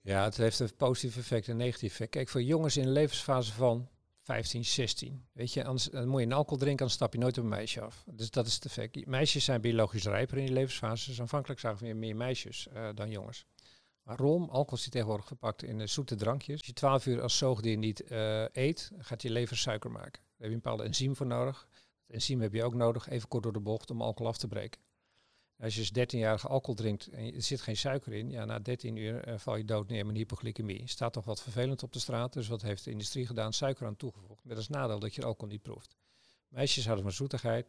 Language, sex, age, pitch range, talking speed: Dutch, male, 50-69, 110-130 Hz, 245 wpm